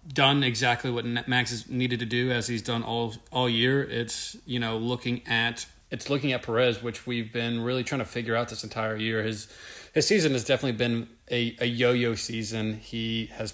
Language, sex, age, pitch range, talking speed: English, male, 30-49, 110-125 Hz, 205 wpm